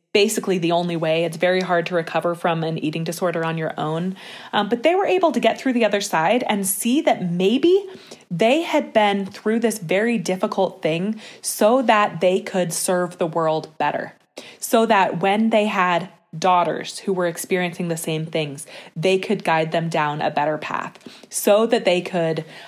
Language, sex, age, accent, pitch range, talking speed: English, female, 20-39, American, 170-210 Hz, 190 wpm